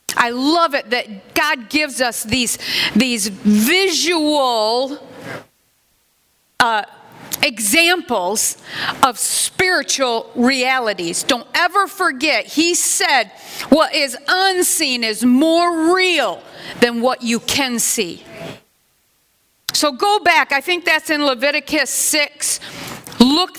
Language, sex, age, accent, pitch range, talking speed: English, female, 50-69, American, 245-315 Hz, 105 wpm